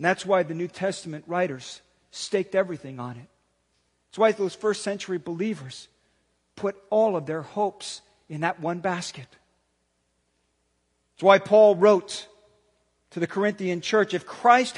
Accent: American